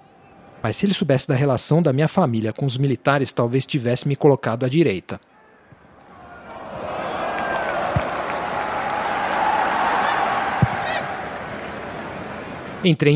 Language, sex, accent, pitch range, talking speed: Portuguese, male, Brazilian, 125-175 Hz, 85 wpm